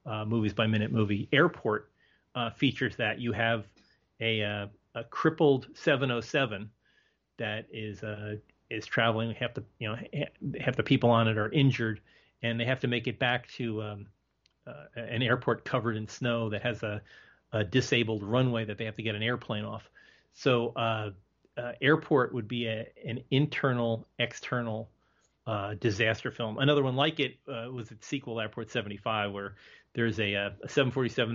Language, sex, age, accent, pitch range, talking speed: English, male, 30-49, American, 110-130 Hz, 180 wpm